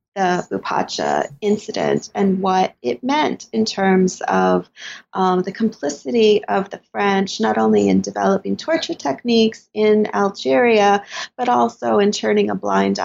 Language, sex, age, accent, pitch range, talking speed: English, female, 30-49, American, 145-240 Hz, 140 wpm